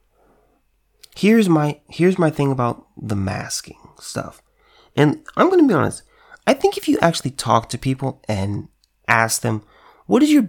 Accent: American